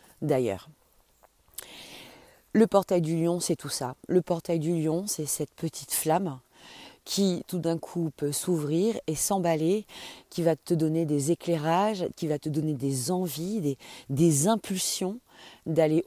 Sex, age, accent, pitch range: female, 40-59, French, 150-180 Hz